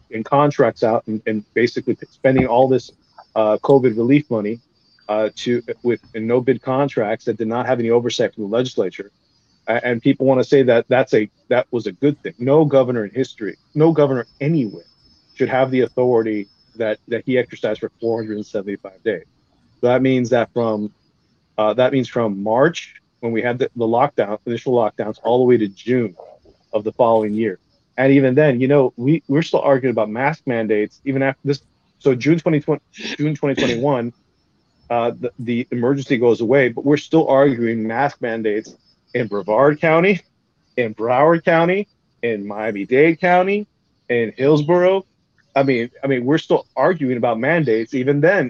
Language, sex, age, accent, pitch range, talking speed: English, male, 40-59, American, 115-140 Hz, 180 wpm